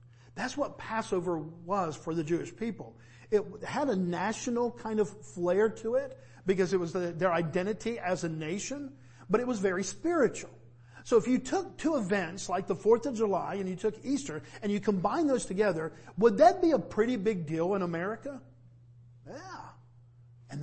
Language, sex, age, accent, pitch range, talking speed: English, male, 50-69, American, 130-205 Hz, 175 wpm